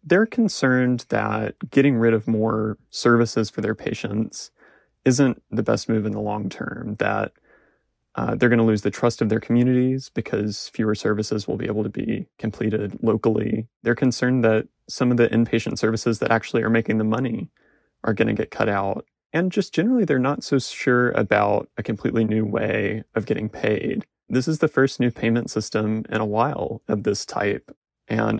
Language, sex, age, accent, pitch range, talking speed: English, male, 30-49, American, 110-125 Hz, 190 wpm